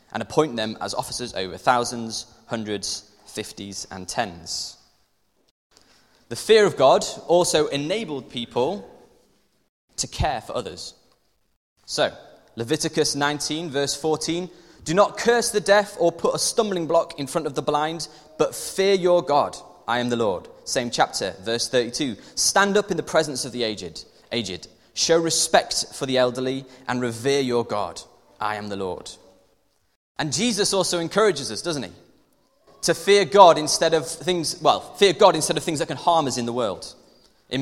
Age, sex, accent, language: 20-39, male, British, English